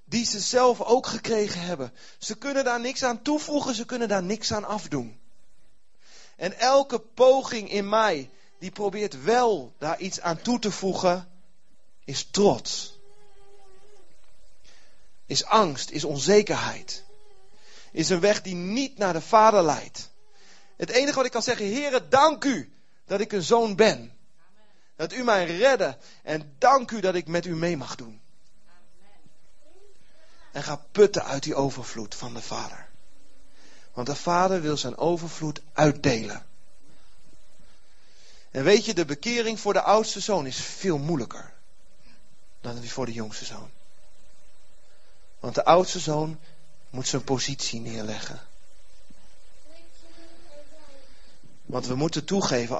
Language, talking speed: Dutch, 140 wpm